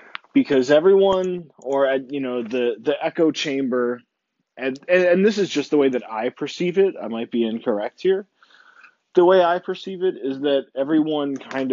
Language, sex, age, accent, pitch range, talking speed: English, male, 20-39, American, 110-145 Hz, 180 wpm